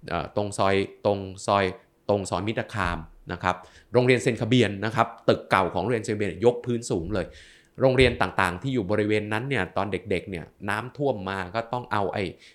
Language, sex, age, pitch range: Thai, male, 20-39, 90-120 Hz